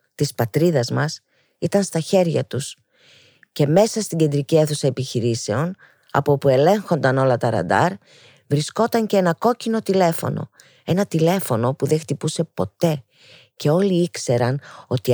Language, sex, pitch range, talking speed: Greek, female, 135-190 Hz, 135 wpm